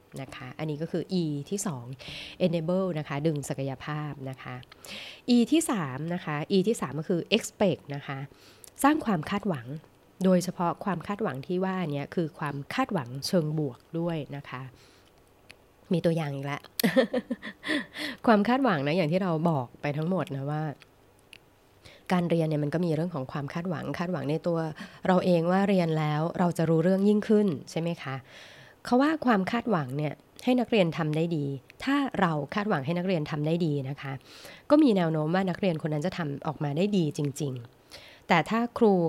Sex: female